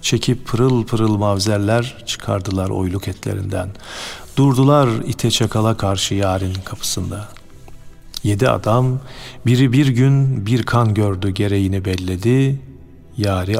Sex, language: male, Turkish